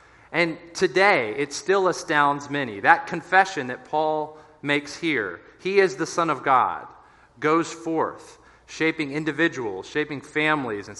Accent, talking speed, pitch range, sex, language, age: American, 135 wpm, 140-185 Hz, male, English, 30-49